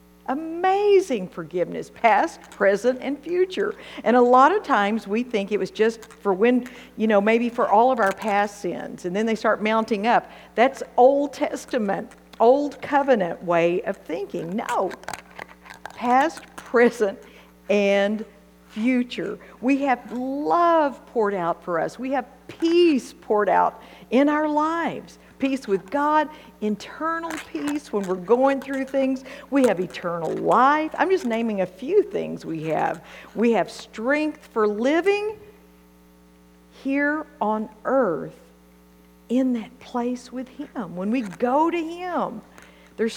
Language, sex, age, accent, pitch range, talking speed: English, female, 50-69, American, 200-290 Hz, 140 wpm